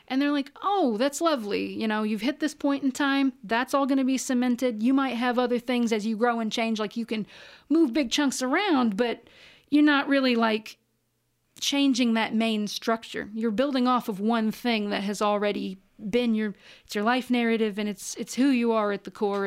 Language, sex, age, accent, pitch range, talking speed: English, female, 40-59, American, 210-260 Hz, 215 wpm